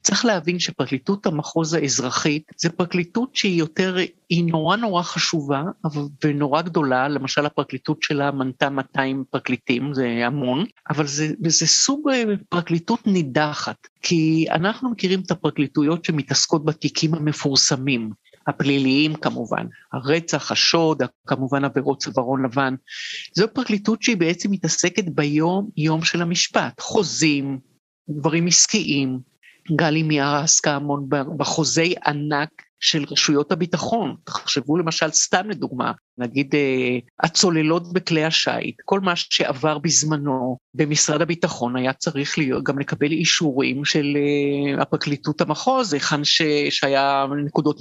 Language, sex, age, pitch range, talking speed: Hebrew, male, 50-69, 140-175 Hz, 115 wpm